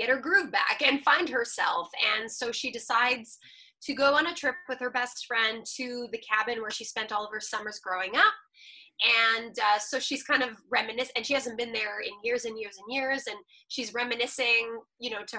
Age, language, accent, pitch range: 20-39, English, American, 215-275 Hz